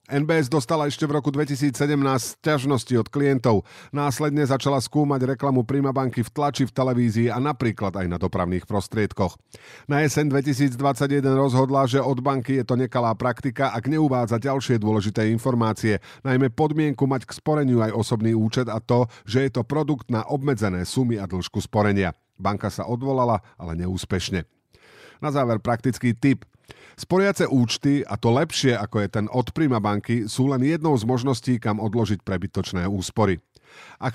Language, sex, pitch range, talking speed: Slovak, male, 105-140 Hz, 160 wpm